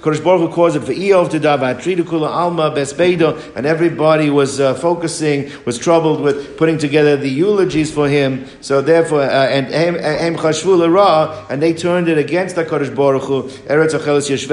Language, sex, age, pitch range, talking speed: English, male, 50-69, 140-170 Hz, 110 wpm